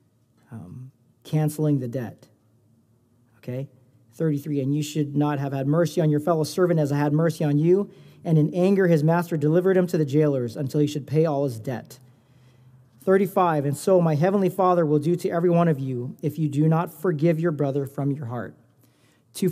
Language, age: English, 40-59